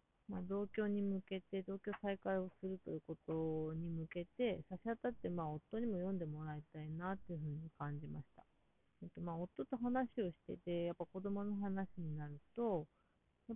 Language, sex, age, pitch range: Japanese, female, 40-59, 155-190 Hz